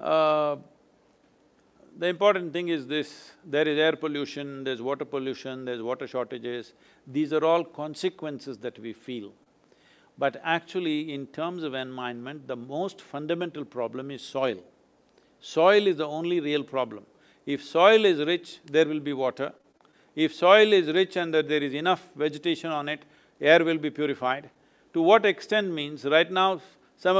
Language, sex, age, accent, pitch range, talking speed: English, male, 50-69, Indian, 140-175 Hz, 160 wpm